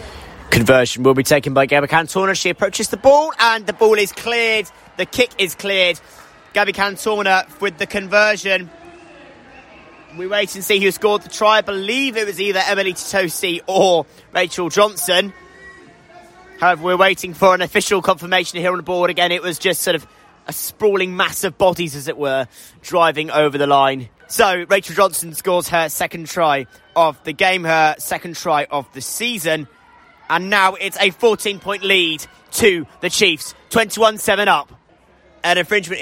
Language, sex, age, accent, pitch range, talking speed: English, male, 20-39, British, 160-205 Hz, 170 wpm